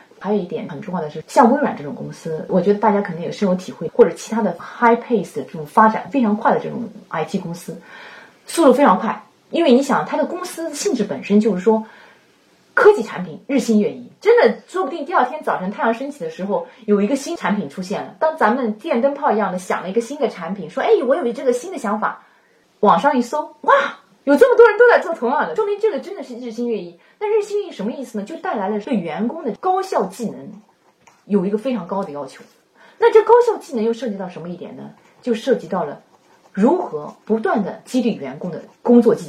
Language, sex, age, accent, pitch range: Chinese, female, 20-39, native, 205-290 Hz